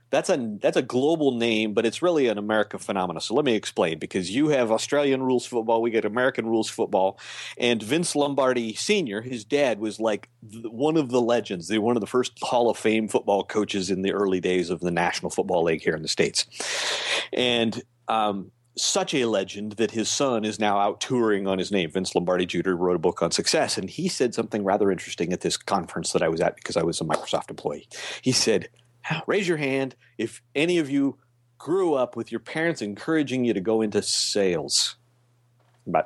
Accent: American